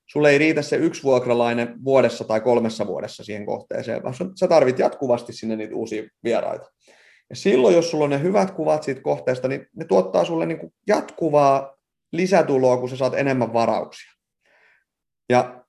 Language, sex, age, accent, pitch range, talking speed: Finnish, male, 30-49, native, 120-160 Hz, 165 wpm